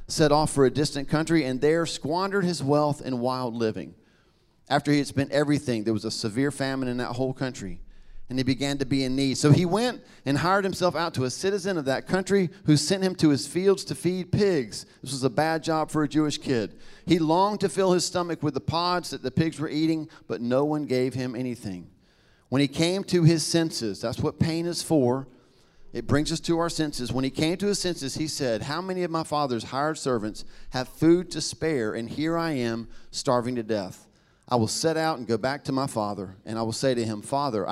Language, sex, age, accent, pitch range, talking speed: English, male, 40-59, American, 120-160 Hz, 230 wpm